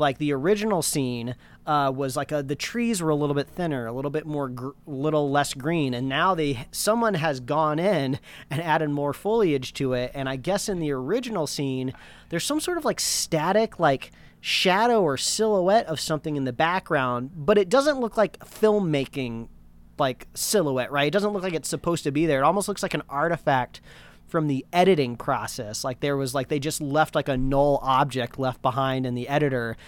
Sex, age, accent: male, 30-49, American